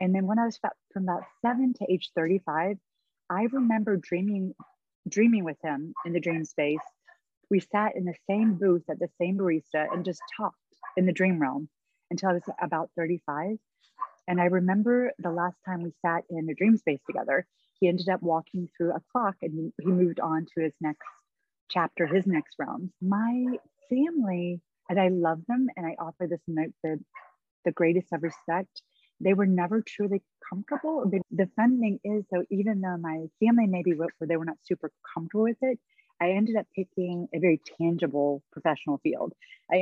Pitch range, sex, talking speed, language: 160-205 Hz, female, 185 wpm, English